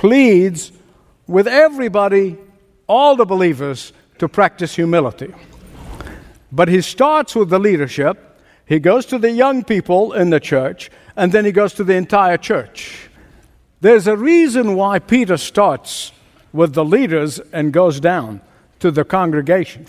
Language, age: English, 60-79